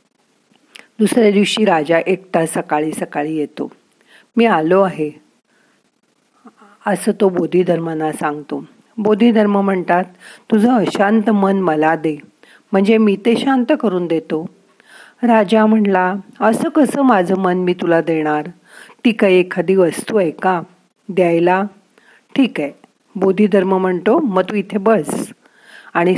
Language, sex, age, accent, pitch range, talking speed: Marathi, female, 50-69, native, 175-220 Hz, 120 wpm